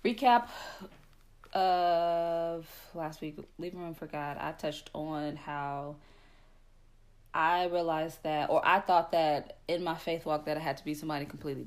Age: 20-39